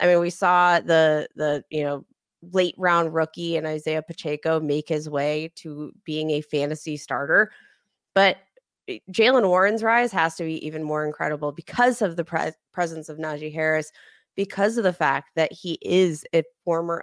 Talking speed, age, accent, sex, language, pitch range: 175 wpm, 20-39, American, female, English, 155-185 Hz